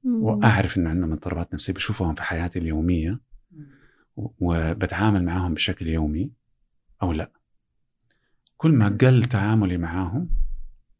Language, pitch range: Arabic, 85-115 Hz